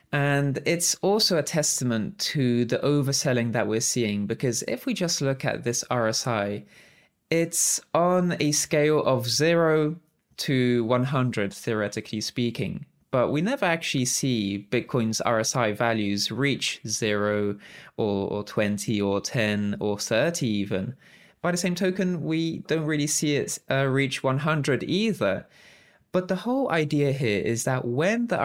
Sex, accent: male, British